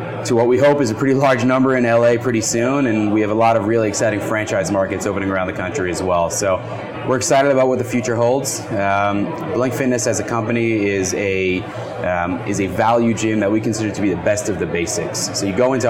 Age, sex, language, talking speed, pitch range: 30-49, male, English, 240 wpm, 95-115 Hz